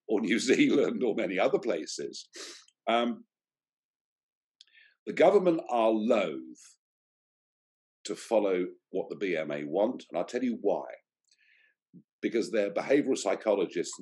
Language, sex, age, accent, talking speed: English, male, 50-69, British, 115 wpm